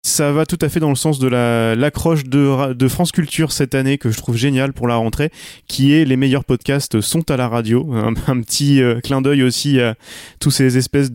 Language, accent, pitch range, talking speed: French, French, 115-140 Hz, 235 wpm